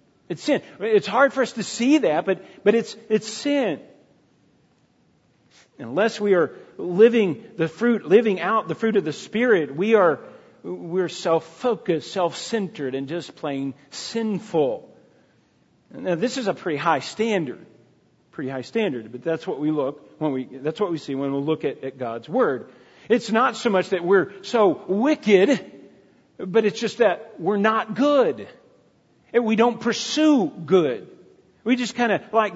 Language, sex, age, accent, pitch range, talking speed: English, male, 50-69, American, 155-220 Hz, 165 wpm